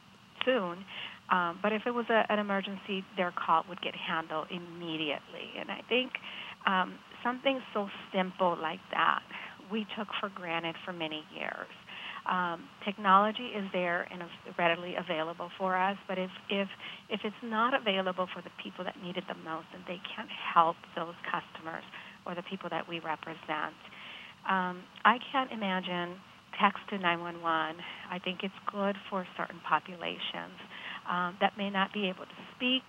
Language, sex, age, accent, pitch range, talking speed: English, female, 40-59, American, 175-205 Hz, 160 wpm